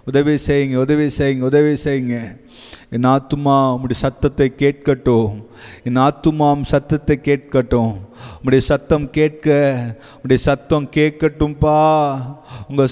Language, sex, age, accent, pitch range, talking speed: Tamil, male, 30-49, native, 125-150 Hz, 100 wpm